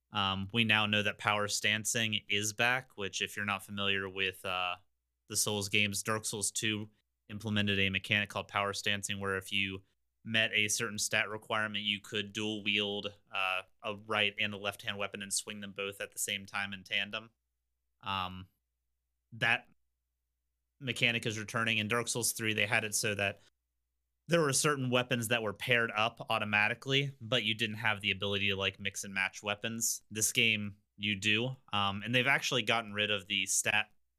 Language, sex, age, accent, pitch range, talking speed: English, male, 30-49, American, 95-110 Hz, 185 wpm